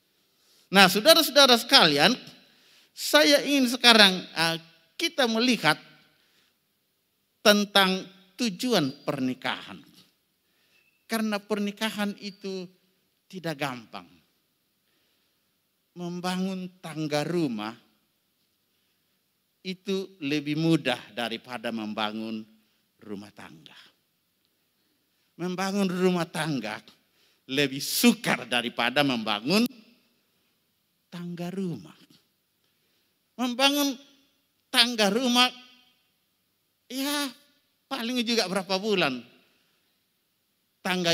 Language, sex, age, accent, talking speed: Indonesian, male, 50-69, native, 65 wpm